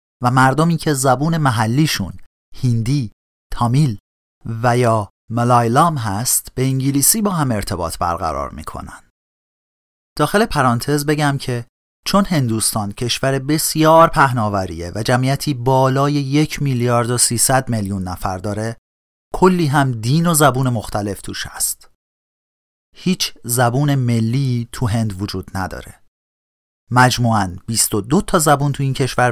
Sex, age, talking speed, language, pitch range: male, 40-59, 120 wpm, Persian, 105-145 Hz